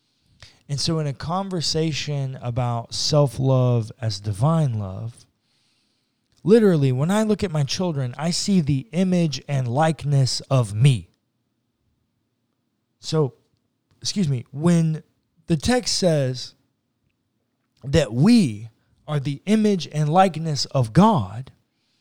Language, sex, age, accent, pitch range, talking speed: English, male, 20-39, American, 120-165 Hz, 110 wpm